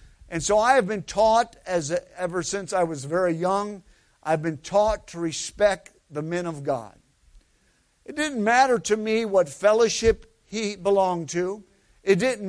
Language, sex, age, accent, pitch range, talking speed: English, male, 50-69, American, 185-230 Hz, 165 wpm